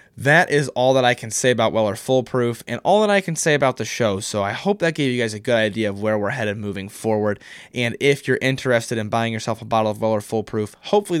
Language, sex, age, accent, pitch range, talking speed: English, male, 20-39, American, 105-130 Hz, 270 wpm